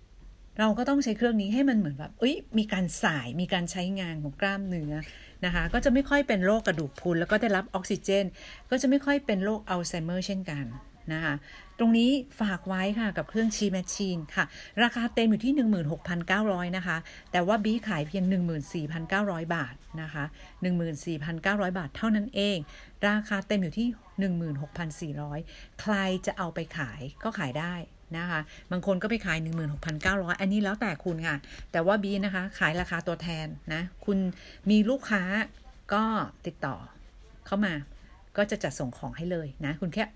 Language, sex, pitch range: Thai, female, 165-210 Hz